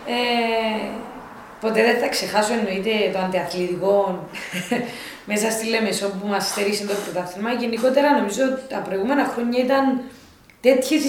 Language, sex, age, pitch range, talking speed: Greek, female, 20-39, 210-265 Hz, 130 wpm